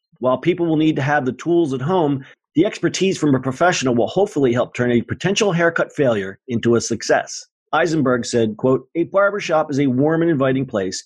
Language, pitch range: English, 125-170 Hz